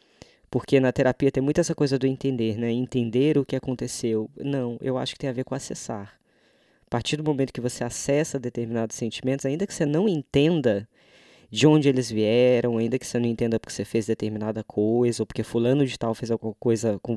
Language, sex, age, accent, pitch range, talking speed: Portuguese, female, 20-39, Brazilian, 115-145 Hz, 210 wpm